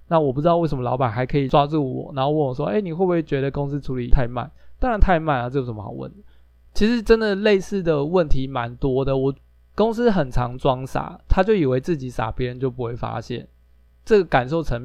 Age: 20-39